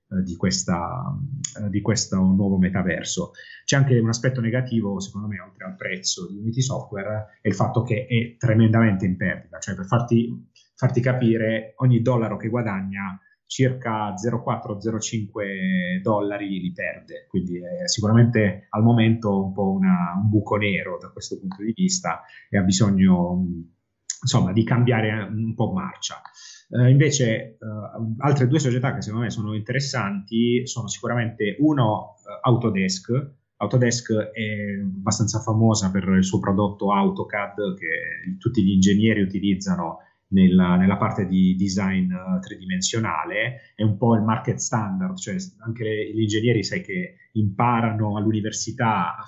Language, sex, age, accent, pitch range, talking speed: Italian, male, 30-49, native, 100-125 Hz, 140 wpm